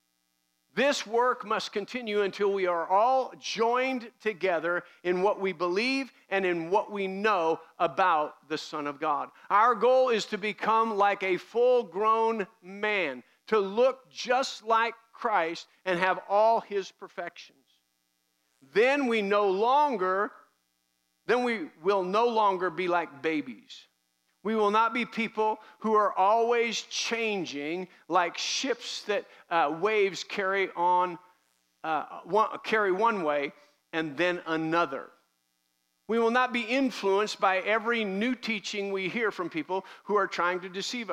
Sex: male